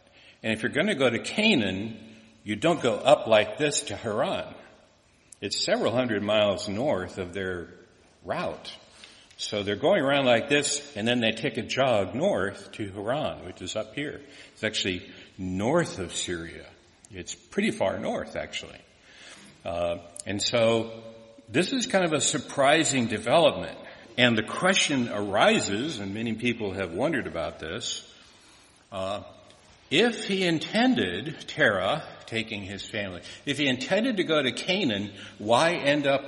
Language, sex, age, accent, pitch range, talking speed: English, male, 60-79, American, 100-140 Hz, 150 wpm